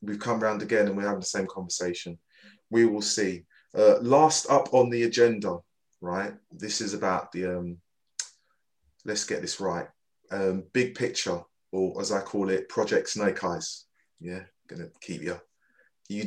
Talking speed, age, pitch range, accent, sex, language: 170 wpm, 20-39, 95-115 Hz, British, male, English